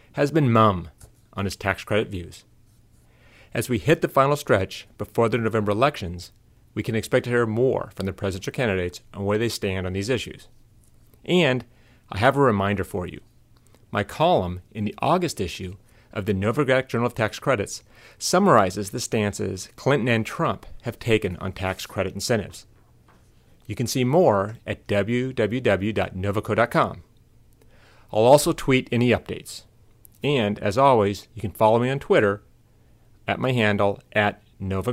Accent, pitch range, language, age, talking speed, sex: American, 100-120 Hz, English, 30-49, 155 wpm, male